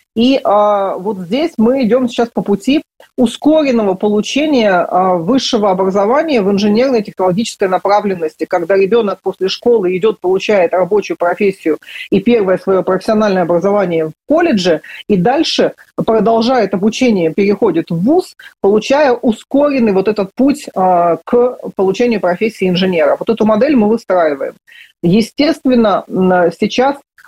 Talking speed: 120 wpm